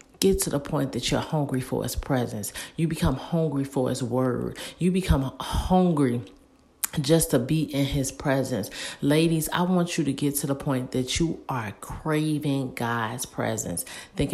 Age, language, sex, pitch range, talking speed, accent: 40-59, English, female, 125-150 Hz, 170 wpm, American